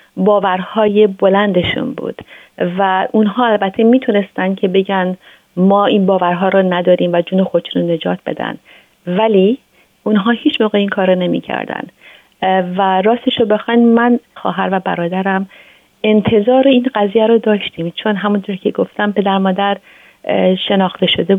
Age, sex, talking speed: 30-49, female, 140 wpm